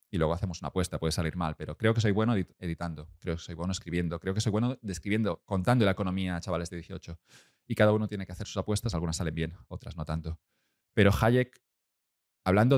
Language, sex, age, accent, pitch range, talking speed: Spanish, male, 30-49, Spanish, 85-105 Hz, 230 wpm